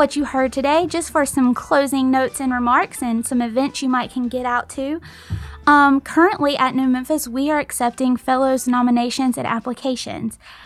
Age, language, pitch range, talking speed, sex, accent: 20-39, English, 220-265 Hz, 180 wpm, female, American